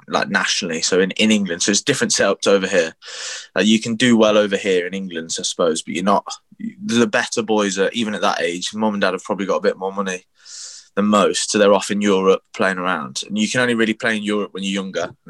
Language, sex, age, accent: English, male, 20-39, British